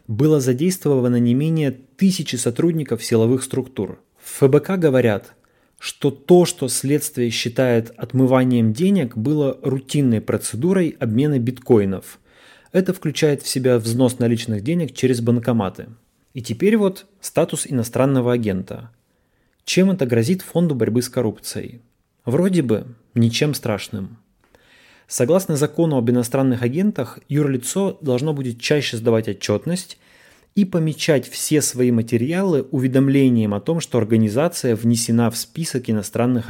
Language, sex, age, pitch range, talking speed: Russian, male, 30-49, 115-155 Hz, 120 wpm